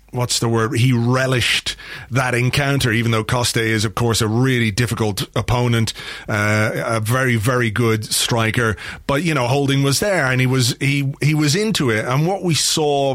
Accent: British